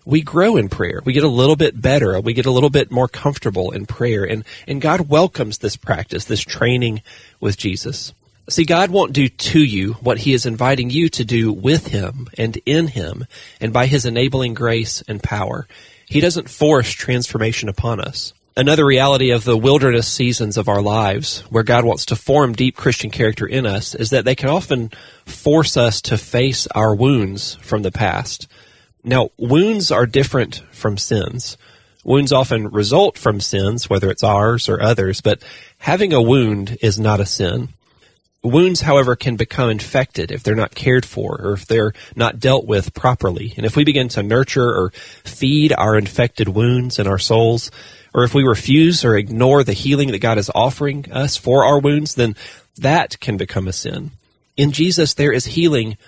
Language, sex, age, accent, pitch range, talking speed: English, male, 40-59, American, 110-140 Hz, 185 wpm